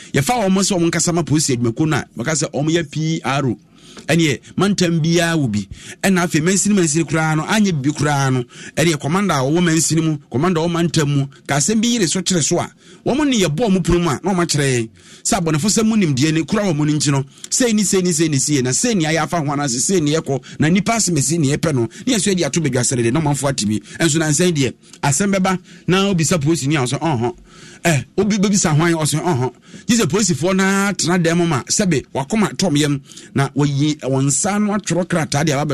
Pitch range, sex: 145-185 Hz, male